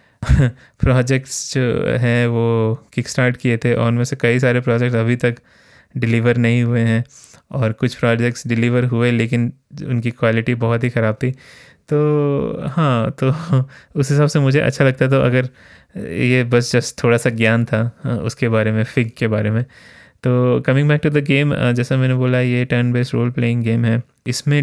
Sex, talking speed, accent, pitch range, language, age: male, 185 wpm, native, 115-130 Hz, Hindi, 20-39